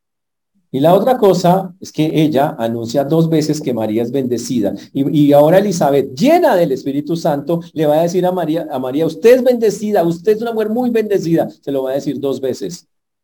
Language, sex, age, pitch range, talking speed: Spanish, male, 40-59, 120-180 Hz, 210 wpm